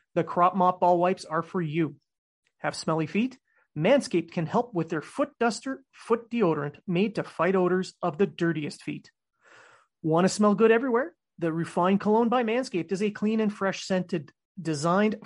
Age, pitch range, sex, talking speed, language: 30-49, 165-210 Hz, male, 175 wpm, English